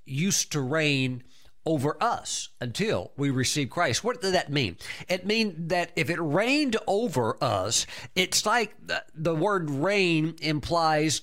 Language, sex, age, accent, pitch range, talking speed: English, male, 50-69, American, 130-175 Hz, 150 wpm